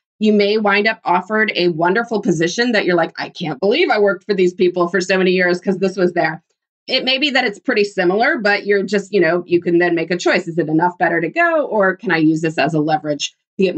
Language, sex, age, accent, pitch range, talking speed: English, female, 20-39, American, 165-205 Hz, 265 wpm